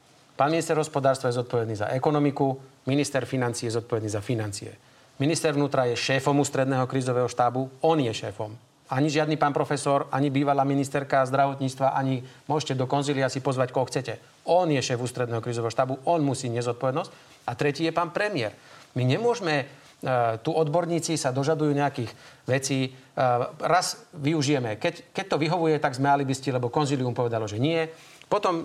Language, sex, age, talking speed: Slovak, male, 40-59, 155 wpm